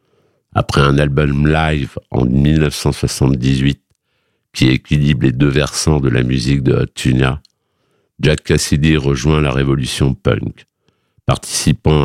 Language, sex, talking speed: French, male, 120 wpm